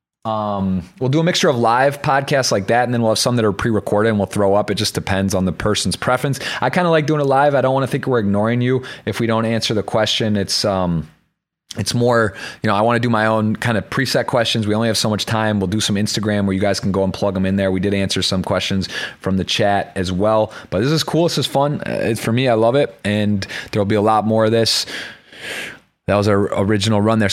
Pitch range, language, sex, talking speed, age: 95-125 Hz, English, male, 270 wpm, 30-49